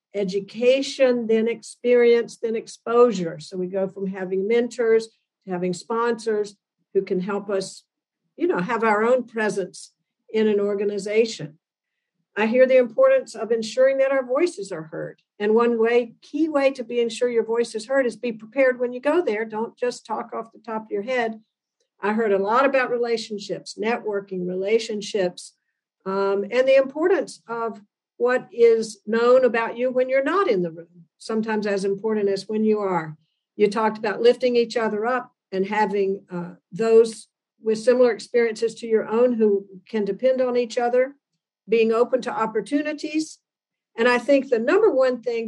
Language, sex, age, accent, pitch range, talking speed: English, female, 60-79, American, 200-245 Hz, 175 wpm